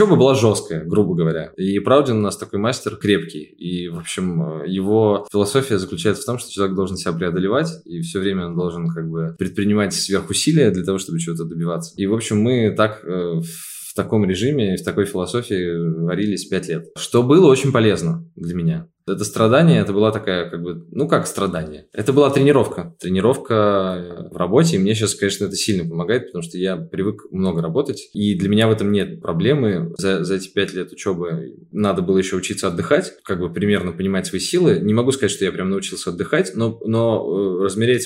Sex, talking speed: male, 190 wpm